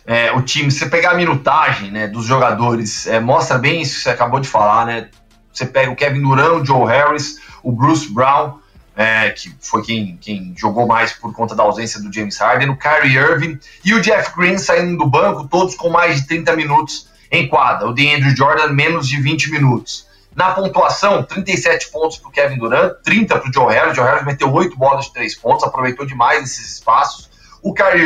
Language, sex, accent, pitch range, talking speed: Portuguese, male, Brazilian, 120-155 Hz, 210 wpm